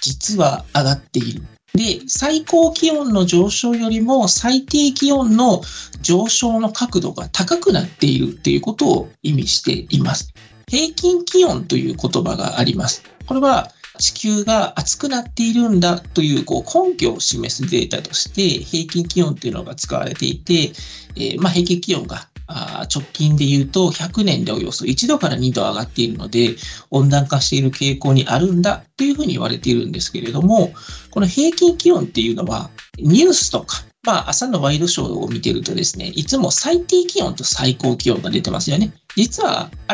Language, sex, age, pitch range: Japanese, male, 40-59, 170-285 Hz